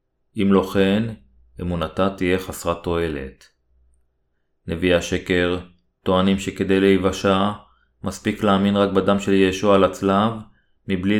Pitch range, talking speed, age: 90-100 Hz, 115 wpm, 30-49